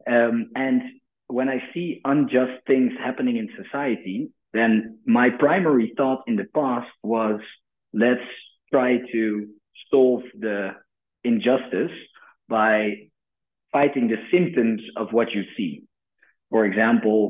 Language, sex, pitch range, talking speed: English, male, 100-125 Hz, 120 wpm